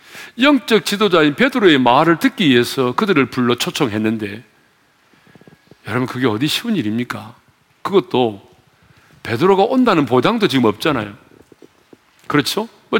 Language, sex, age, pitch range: Korean, male, 40-59, 120-205 Hz